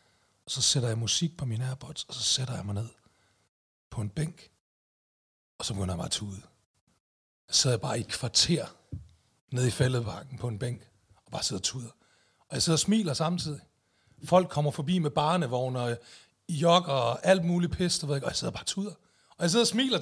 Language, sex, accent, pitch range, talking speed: Danish, male, native, 125-170 Hz, 200 wpm